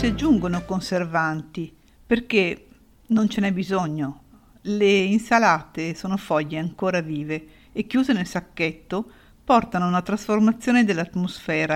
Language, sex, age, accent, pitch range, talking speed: Italian, female, 50-69, native, 165-220 Hz, 110 wpm